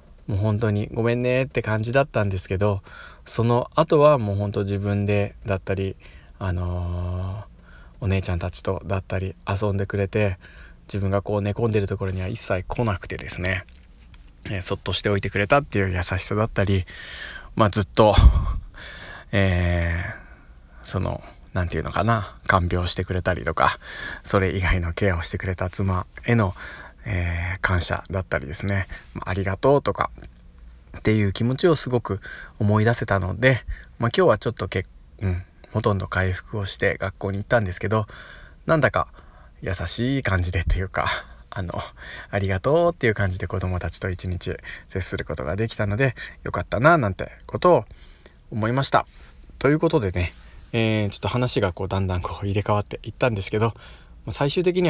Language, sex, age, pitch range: Japanese, male, 20-39, 90-105 Hz